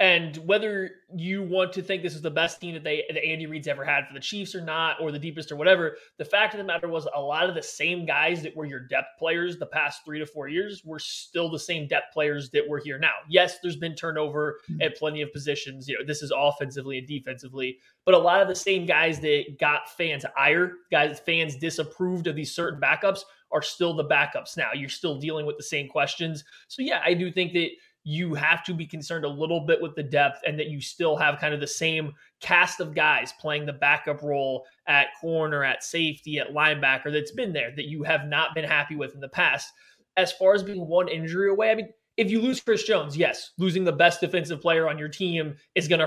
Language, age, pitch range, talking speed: English, 20-39, 145-180 Hz, 240 wpm